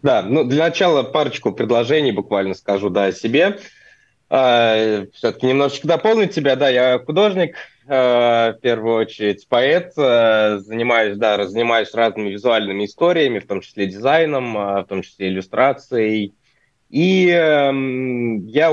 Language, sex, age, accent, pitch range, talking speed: Russian, male, 20-39, native, 105-145 Hz, 115 wpm